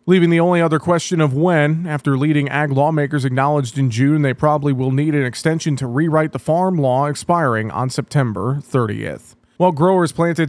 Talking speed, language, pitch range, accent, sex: 185 wpm, English, 135-160 Hz, American, male